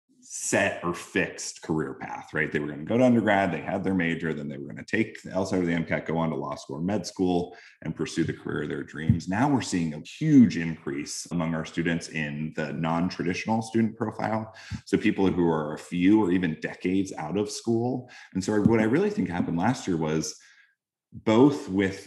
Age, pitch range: 30-49, 80-95 Hz